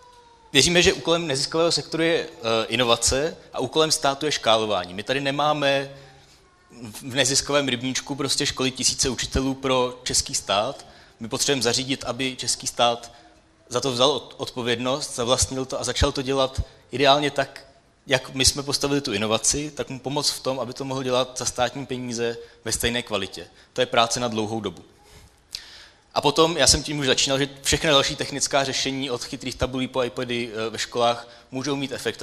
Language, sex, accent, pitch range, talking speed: Czech, male, native, 115-140 Hz, 170 wpm